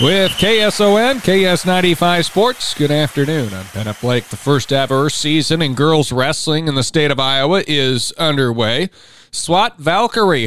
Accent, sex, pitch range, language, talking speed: American, male, 125-160 Hz, English, 145 wpm